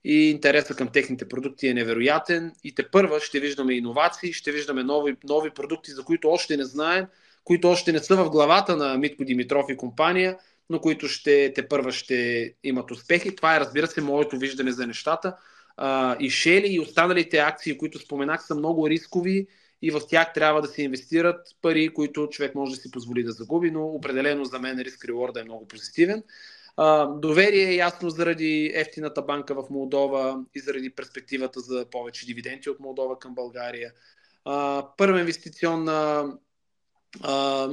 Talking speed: 170 wpm